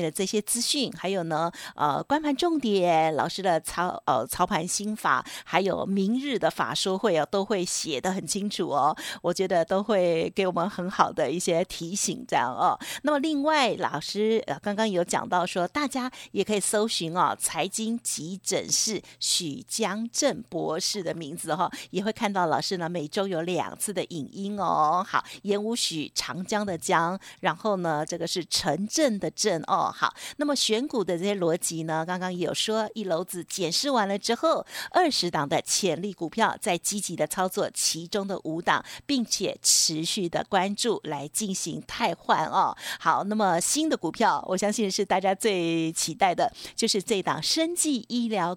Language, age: Chinese, 50-69